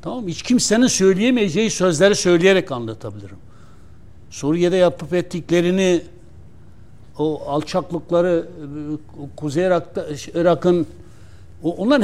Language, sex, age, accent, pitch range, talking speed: Turkish, male, 60-79, native, 150-205 Hz, 80 wpm